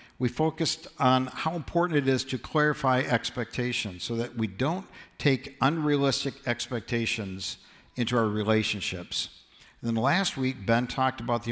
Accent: American